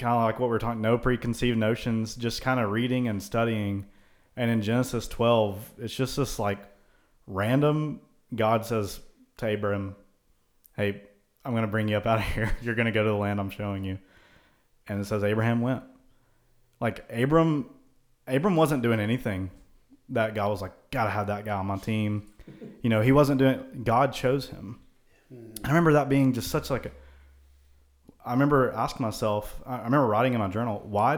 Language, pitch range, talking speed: English, 100-125 Hz, 185 wpm